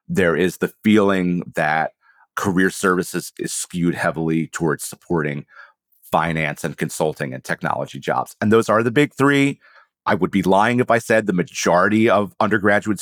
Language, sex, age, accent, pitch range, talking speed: English, male, 40-59, American, 90-120 Hz, 160 wpm